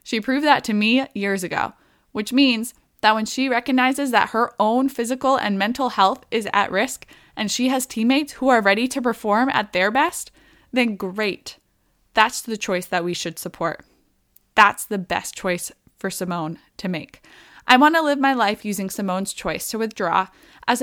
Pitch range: 200-265 Hz